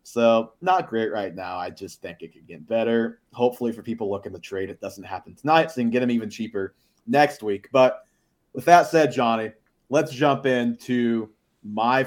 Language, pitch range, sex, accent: English, 105-130 Hz, male, American